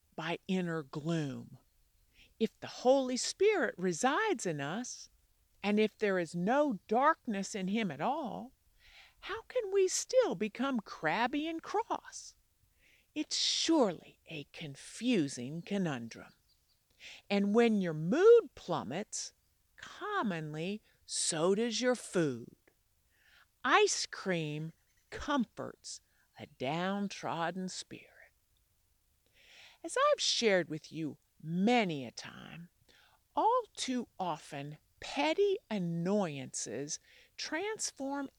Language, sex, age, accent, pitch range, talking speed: English, female, 50-69, American, 175-295 Hz, 100 wpm